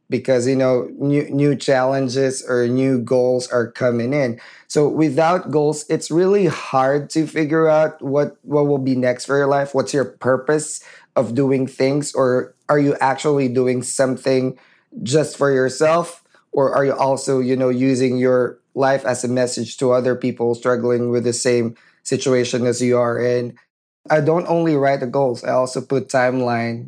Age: 20-39